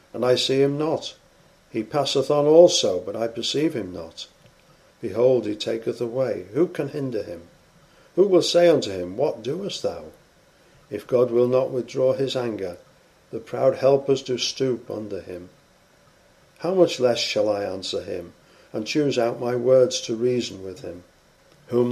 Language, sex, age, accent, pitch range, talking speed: English, male, 50-69, British, 120-155 Hz, 165 wpm